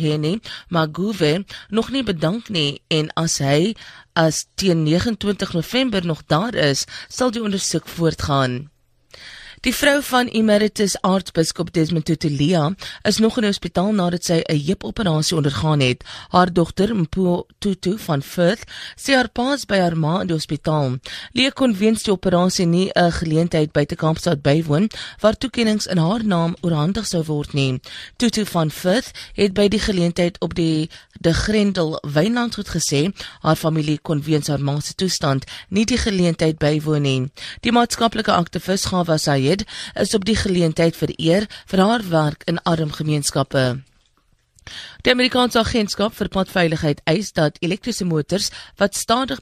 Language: English